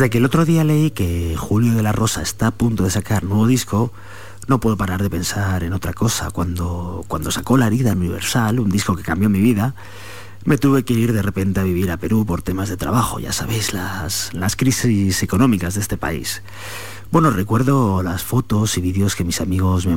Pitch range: 90-115 Hz